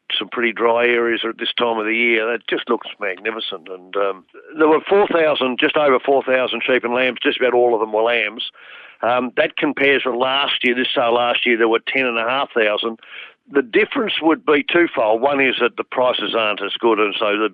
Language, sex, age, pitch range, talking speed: English, male, 50-69, 115-135 Hz, 210 wpm